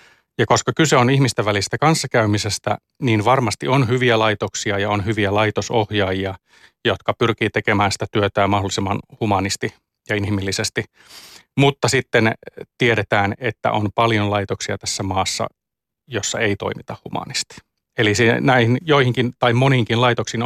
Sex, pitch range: male, 105-125 Hz